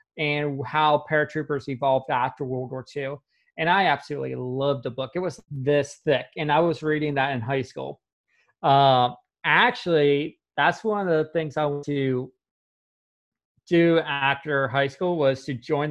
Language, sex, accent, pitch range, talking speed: English, male, American, 135-165 Hz, 160 wpm